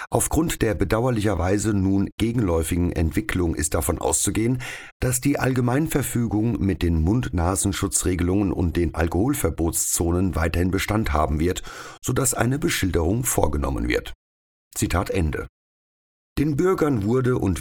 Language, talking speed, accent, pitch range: German, 120 wpm, German, 85-115 Hz